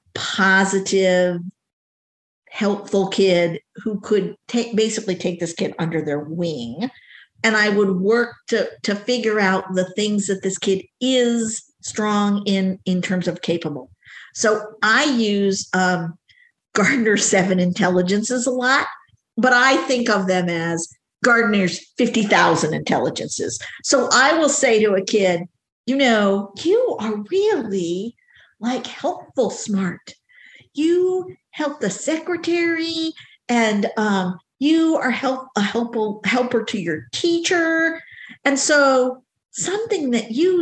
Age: 50-69